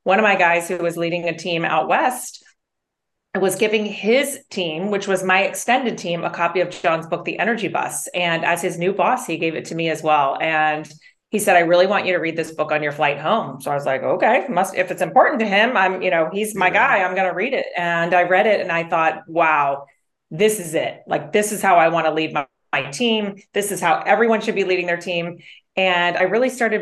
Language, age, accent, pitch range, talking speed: English, 30-49, American, 160-200 Hz, 250 wpm